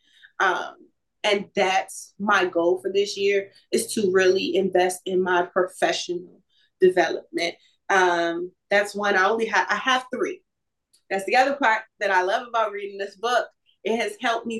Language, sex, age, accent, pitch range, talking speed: English, female, 20-39, American, 200-300 Hz, 165 wpm